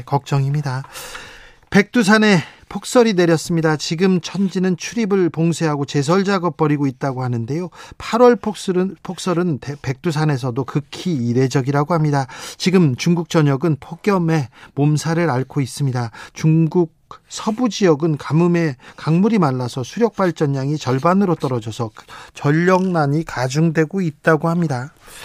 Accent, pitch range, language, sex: native, 140-180 Hz, Korean, male